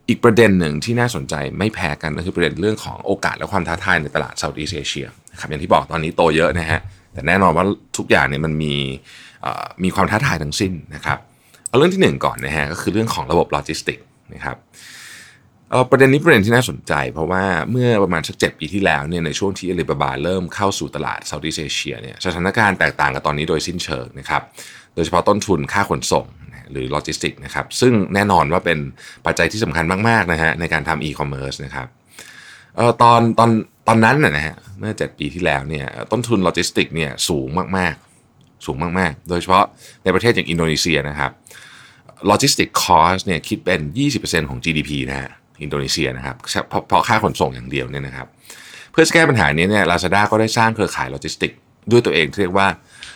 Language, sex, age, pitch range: Thai, male, 20-39, 75-105 Hz